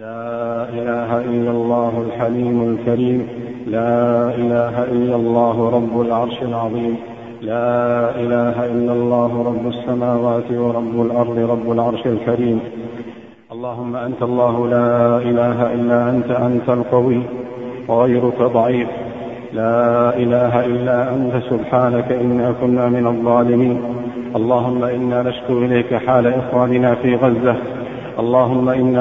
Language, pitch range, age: Arabic, 120-130 Hz, 50-69